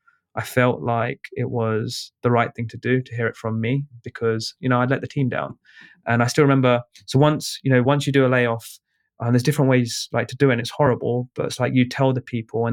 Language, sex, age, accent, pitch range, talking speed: English, male, 20-39, British, 120-140 Hz, 260 wpm